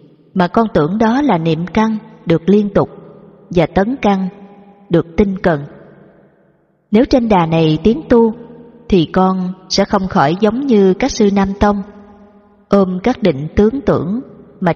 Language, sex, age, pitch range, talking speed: Vietnamese, female, 20-39, 170-215 Hz, 160 wpm